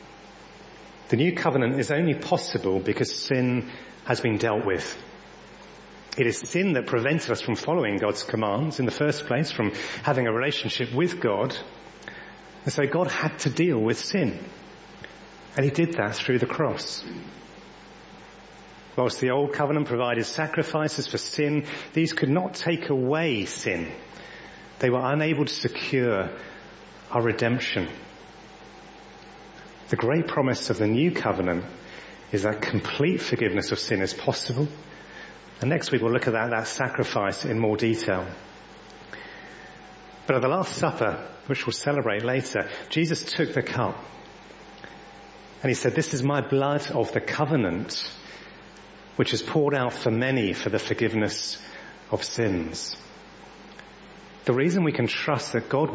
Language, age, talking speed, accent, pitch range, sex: English, 40-59, 145 wpm, British, 115-150 Hz, male